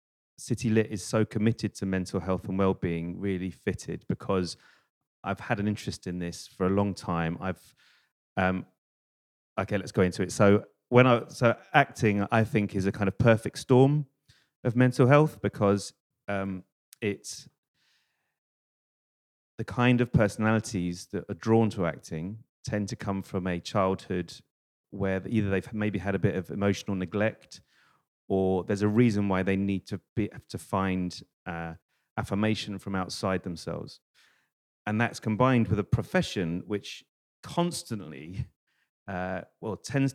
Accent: British